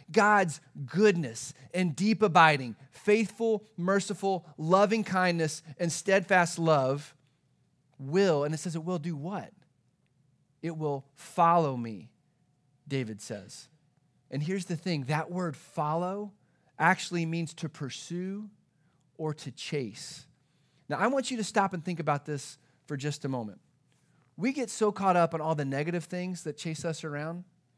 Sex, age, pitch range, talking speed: male, 30-49, 145-185 Hz, 145 wpm